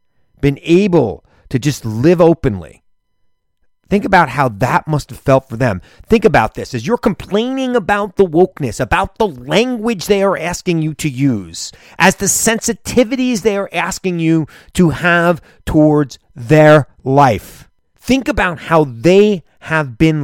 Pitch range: 140-185 Hz